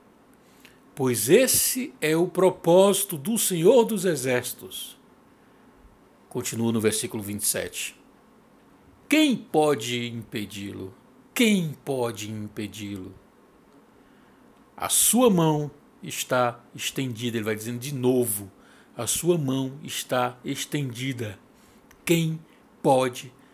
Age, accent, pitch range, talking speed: 60-79, Brazilian, 125-175 Hz, 90 wpm